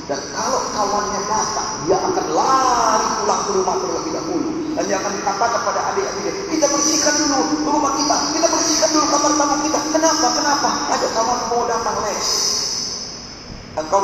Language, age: Indonesian, 40-59